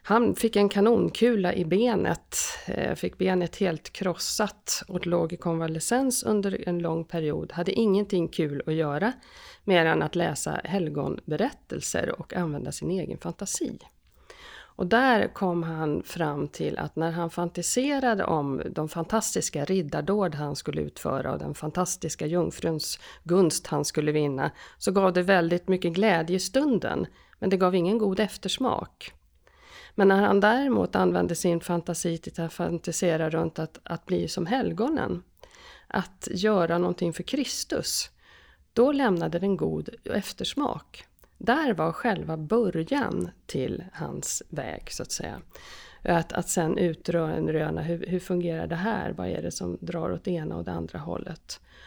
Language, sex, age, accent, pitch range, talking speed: Swedish, female, 50-69, native, 165-205 Hz, 150 wpm